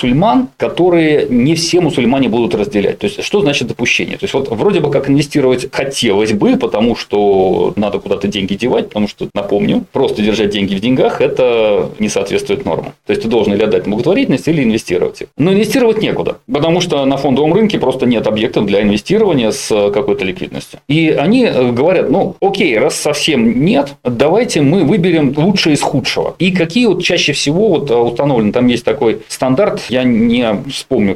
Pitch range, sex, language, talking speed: 110-180 Hz, male, Russian, 175 wpm